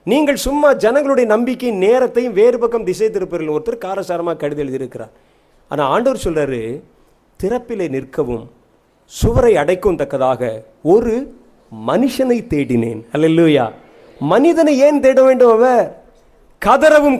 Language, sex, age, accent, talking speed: Tamil, male, 30-49, native, 80 wpm